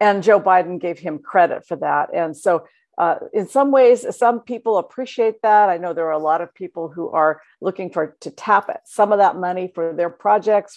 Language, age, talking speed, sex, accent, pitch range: English, 50-69, 225 wpm, female, American, 165-205 Hz